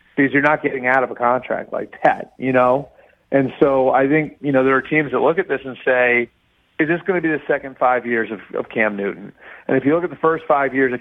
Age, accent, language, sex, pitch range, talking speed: 40-59, American, English, male, 125-150 Hz, 275 wpm